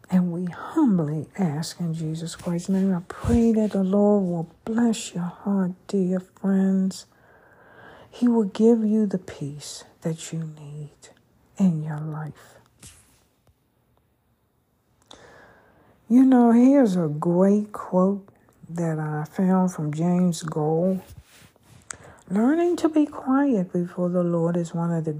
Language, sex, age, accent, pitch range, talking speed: English, female, 60-79, American, 160-205 Hz, 130 wpm